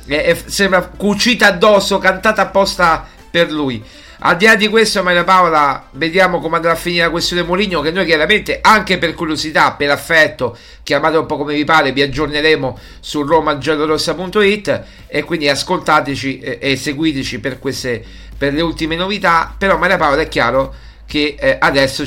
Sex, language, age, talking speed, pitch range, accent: male, Italian, 50-69, 165 wpm, 140-180 Hz, native